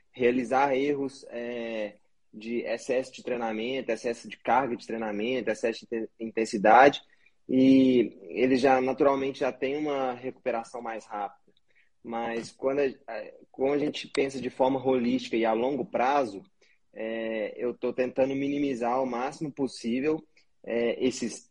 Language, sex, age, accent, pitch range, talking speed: Portuguese, male, 20-39, Brazilian, 115-145 Hz, 125 wpm